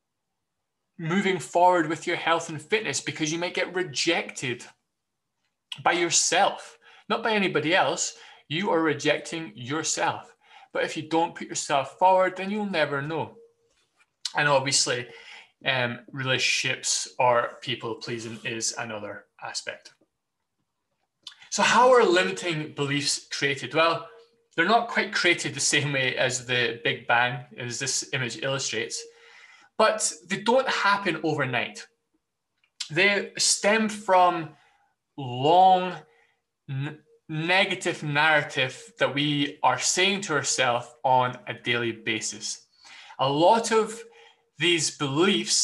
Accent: British